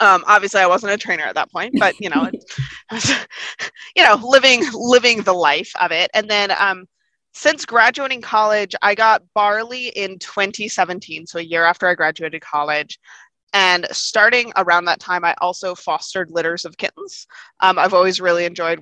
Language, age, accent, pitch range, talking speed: English, 20-39, American, 175-220 Hz, 185 wpm